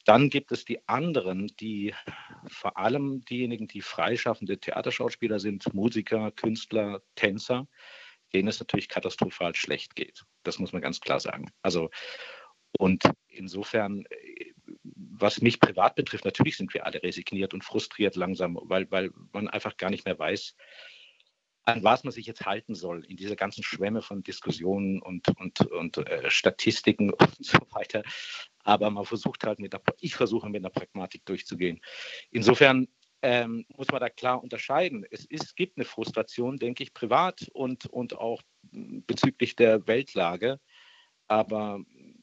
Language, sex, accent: German, male, German